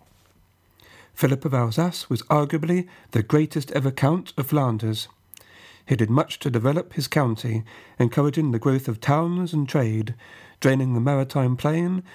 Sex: male